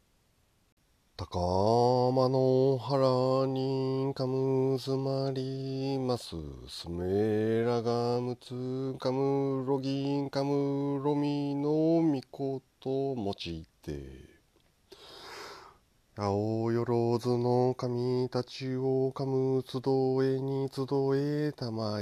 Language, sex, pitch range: Japanese, male, 110-130 Hz